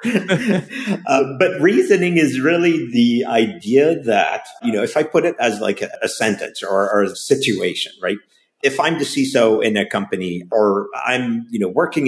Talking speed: 180 wpm